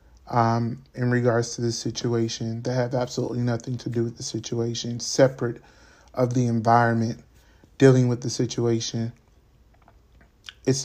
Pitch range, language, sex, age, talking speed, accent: 110-130 Hz, English, male, 30-49, 135 wpm, American